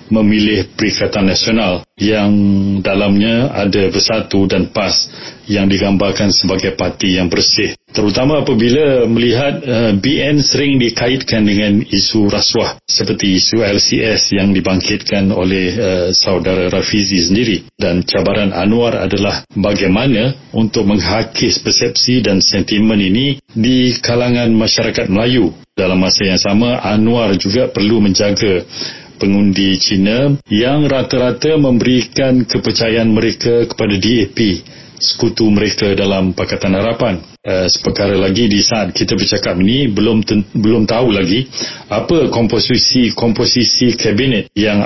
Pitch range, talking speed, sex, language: 95-115 Hz, 115 wpm, male, Malay